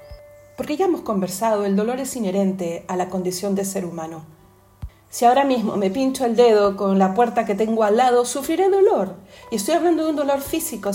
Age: 40-59